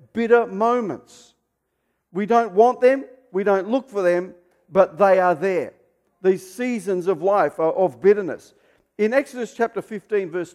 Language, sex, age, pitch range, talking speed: English, male, 50-69, 155-205 Hz, 155 wpm